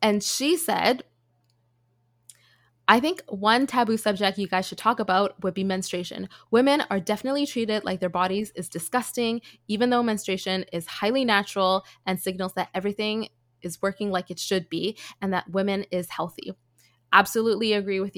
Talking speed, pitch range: 160 wpm, 180-215 Hz